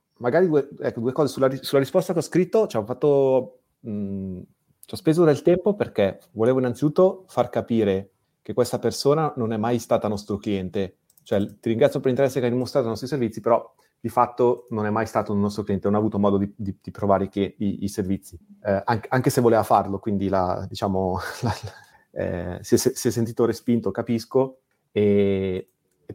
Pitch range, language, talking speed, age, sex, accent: 100-120 Hz, Italian, 205 wpm, 30-49, male, native